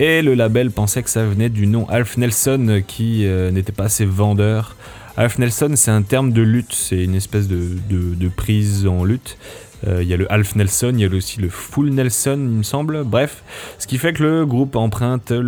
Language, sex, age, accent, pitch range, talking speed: French, male, 20-39, French, 100-125 Hz, 225 wpm